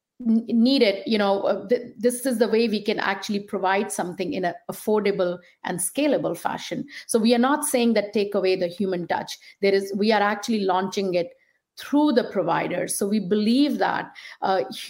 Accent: Indian